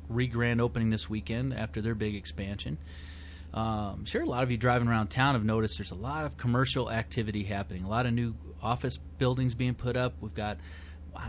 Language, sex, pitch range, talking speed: English, male, 100-120 Hz, 205 wpm